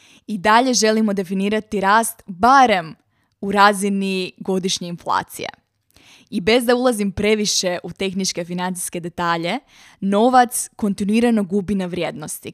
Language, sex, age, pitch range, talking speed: Croatian, female, 20-39, 185-220 Hz, 115 wpm